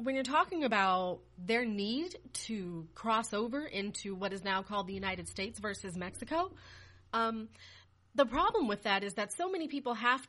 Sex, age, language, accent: female, 30-49, English, American